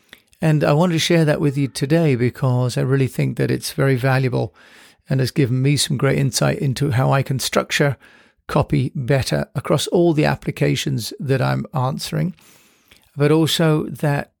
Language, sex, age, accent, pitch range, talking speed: English, male, 50-69, British, 135-155 Hz, 170 wpm